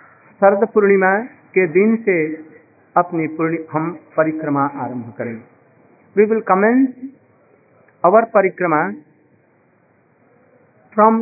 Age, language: 50-69, Hindi